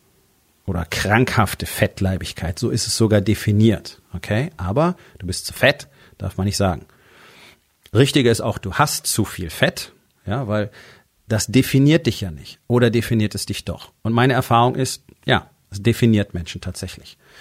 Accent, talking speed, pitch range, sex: German, 160 wpm, 100-120 Hz, male